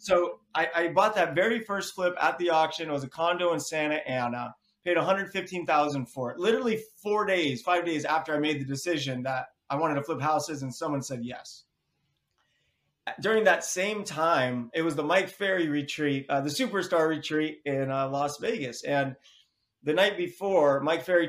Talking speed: 185 wpm